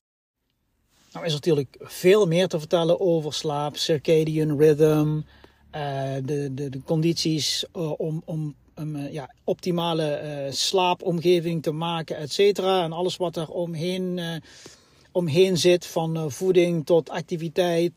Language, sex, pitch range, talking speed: Dutch, male, 155-180 Hz, 120 wpm